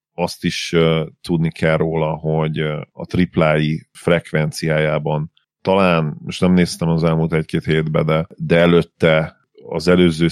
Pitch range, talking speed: 80-90 Hz, 140 wpm